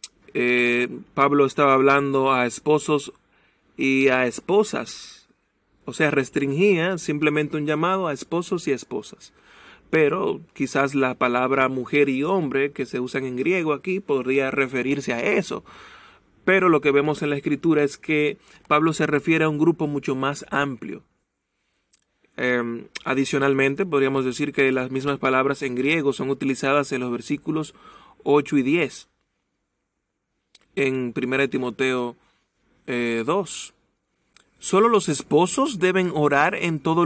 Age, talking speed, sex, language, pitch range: 30-49, 135 wpm, male, Spanish, 135-160 Hz